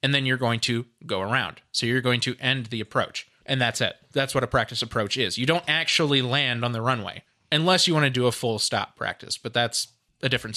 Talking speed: 245 wpm